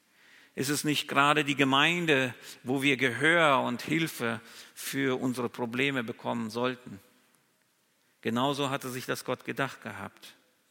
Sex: male